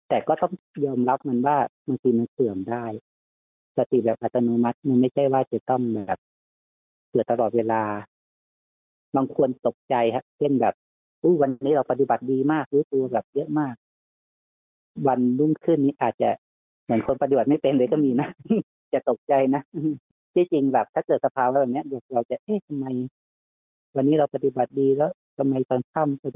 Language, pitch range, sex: Thai, 110-140 Hz, female